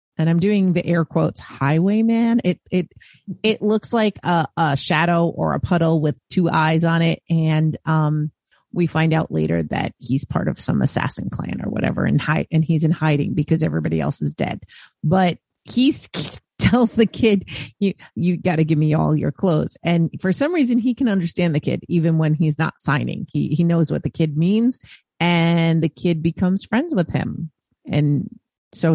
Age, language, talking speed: 30-49, English, 190 wpm